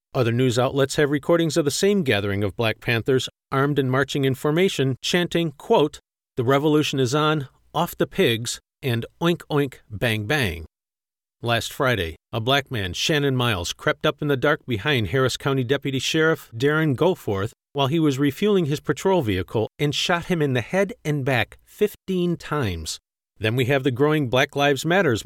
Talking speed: 180 wpm